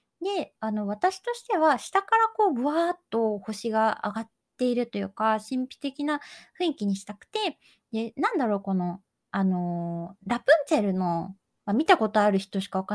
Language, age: Japanese, 20-39